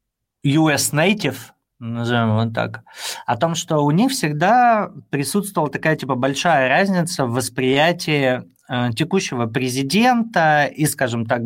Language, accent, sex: Russian, native, male